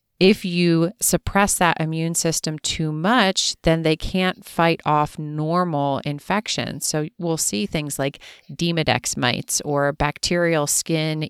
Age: 30-49